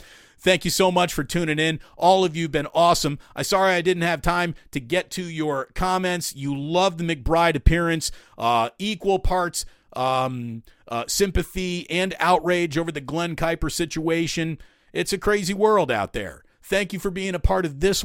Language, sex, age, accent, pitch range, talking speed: English, male, 40-59, American, 125-175 Hz, 185 wpm